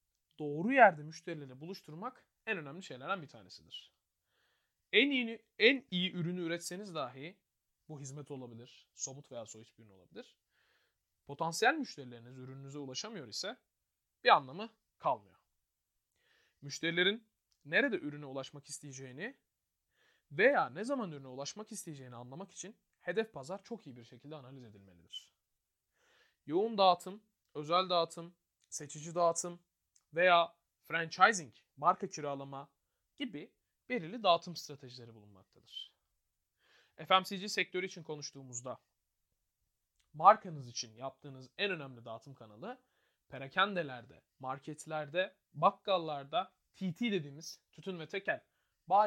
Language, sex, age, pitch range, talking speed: Turkish, male, 30-49, 130-190 Hz, 110 wpm